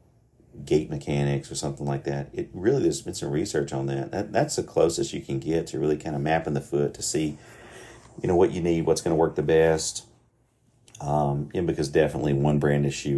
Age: 40-59